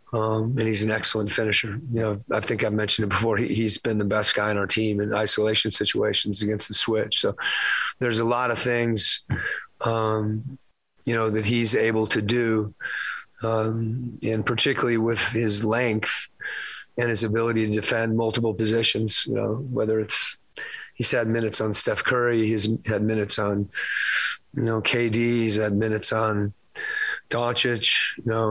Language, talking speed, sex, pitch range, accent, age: English, 165 wpm, male, 105-115 Hz, American, 30-49